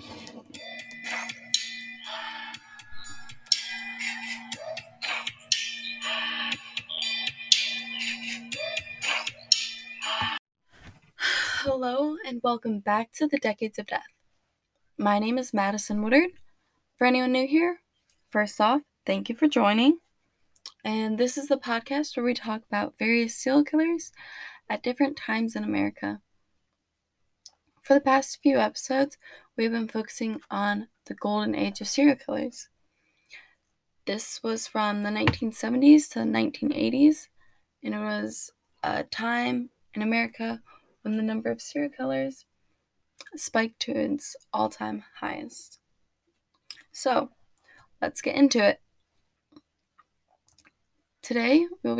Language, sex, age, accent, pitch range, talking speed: English, female, 20-39, American, 205-280 Hz, 105 wpm